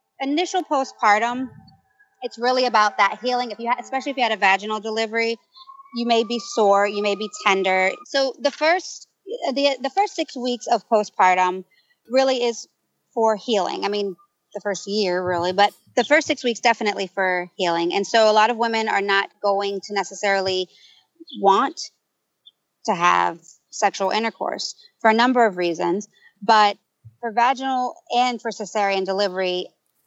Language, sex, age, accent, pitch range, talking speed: English, female, 30-49, American, 195-245 Hz, 160 wpm